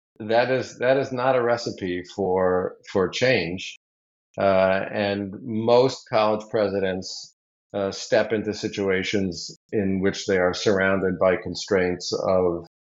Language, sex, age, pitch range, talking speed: English, male, 50-69, 95-105 Hz, 125 wpm